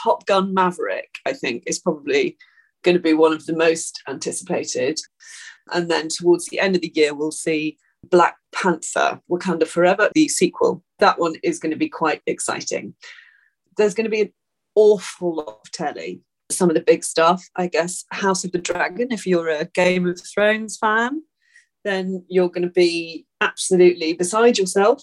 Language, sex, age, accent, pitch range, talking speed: English, female, 30-49, British, 170-220 Hz, 175 wpm